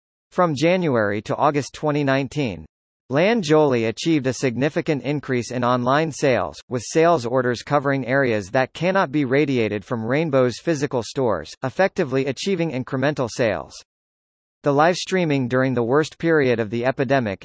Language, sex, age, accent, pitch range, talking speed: English, male, 40-59, American, 120-155 Hz, 140 wpm